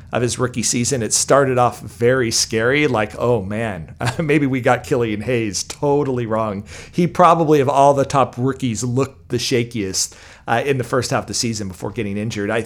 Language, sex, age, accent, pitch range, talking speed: English, male, 40-59, American, 105-130 Hz, 195 wpm